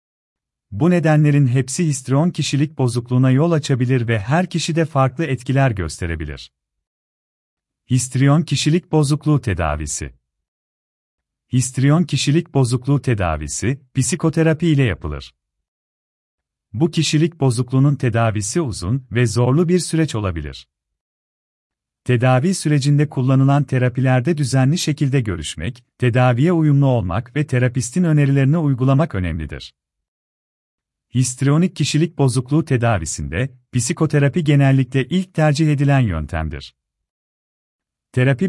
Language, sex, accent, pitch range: Turkish, male, native, 100-145 Hz